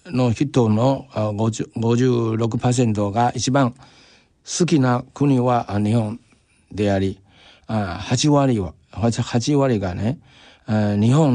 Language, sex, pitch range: Japanese, male, 100-125 Hz